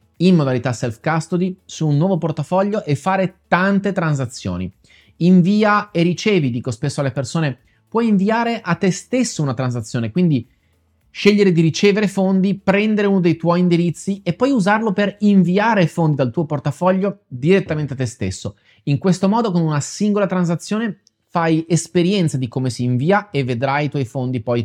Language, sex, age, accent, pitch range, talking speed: Italian, male, 30-49, native, 130-185 Hz, 165 wpm